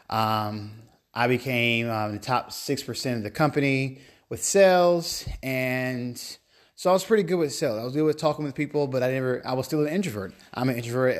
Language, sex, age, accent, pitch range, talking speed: English, male, 20-39, American, 115-140 Hz, 205 wpm